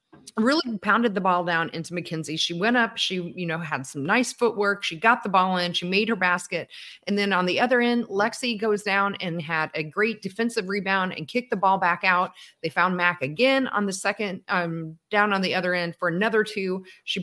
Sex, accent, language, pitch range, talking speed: female, American, English, 175-225 Hz, 225 wpm